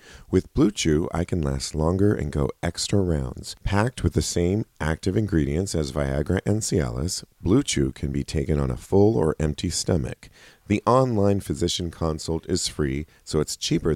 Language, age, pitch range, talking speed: English, 40-59, 75-100 Hz, 175 wpm